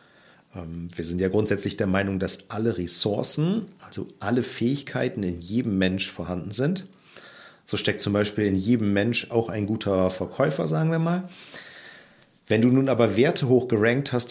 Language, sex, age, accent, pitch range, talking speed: German, male, 40-59, German, 95-125 Hz, 160 wpm